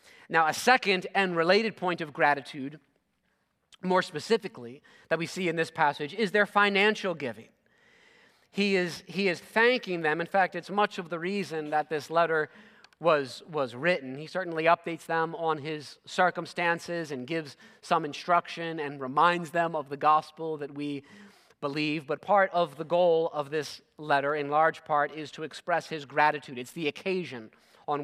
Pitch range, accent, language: 150-190 Hz, American, English